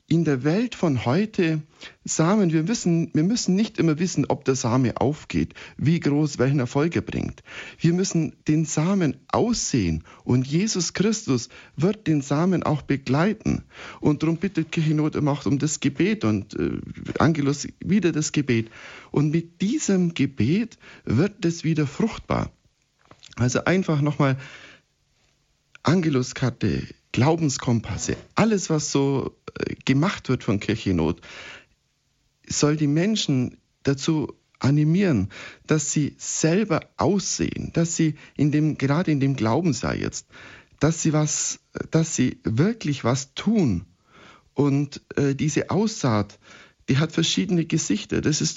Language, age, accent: German, 60-79, German